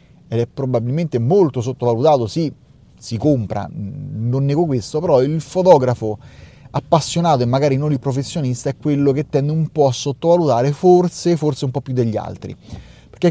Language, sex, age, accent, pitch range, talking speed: Italian, male, 30-49, native, 115-150 Hz, 160 wpm